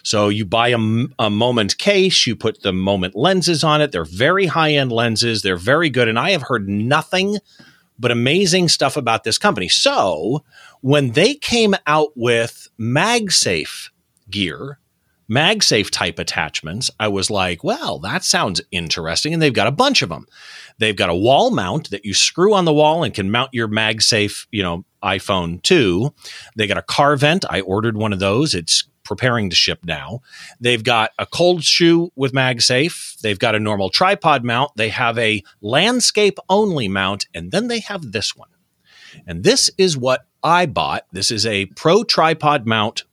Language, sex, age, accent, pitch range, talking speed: English, male, 40-59, American, 105-165 Hz, 180 wpm